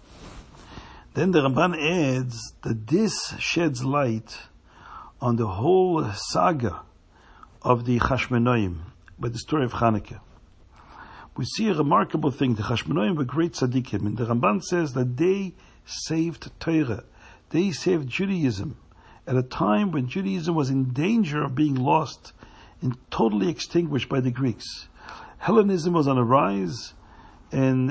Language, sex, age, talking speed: English, male, 60-79, 140 wpm